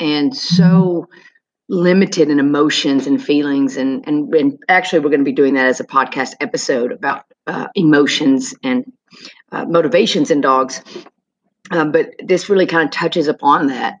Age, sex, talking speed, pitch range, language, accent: 40-59, female, 165 wpm, 145-210 Hz, English, American